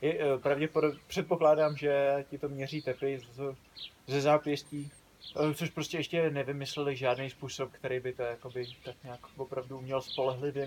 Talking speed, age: 165 wpm, 20-39